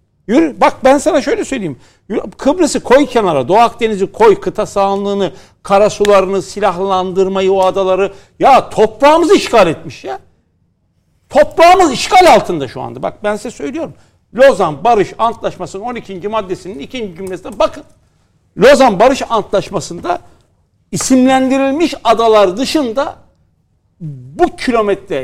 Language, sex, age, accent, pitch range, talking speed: Turkish, male, 60-79, native, 190-275 Hz, 115 wpm